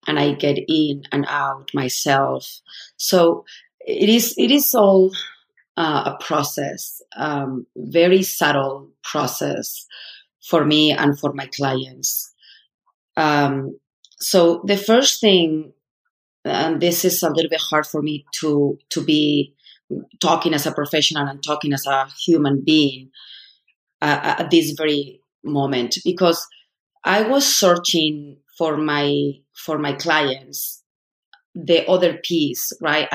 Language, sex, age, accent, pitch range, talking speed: English, female, 30-49, Spanish, 145-170 Hz, 130 wpm